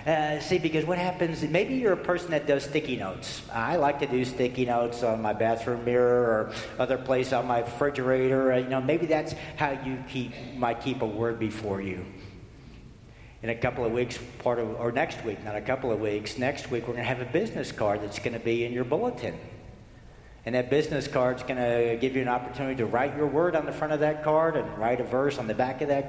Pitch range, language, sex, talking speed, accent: 115-140 Hz, English, male, 235 wpm, American